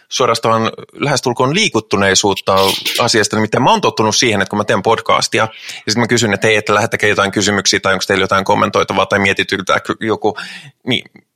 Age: 20-39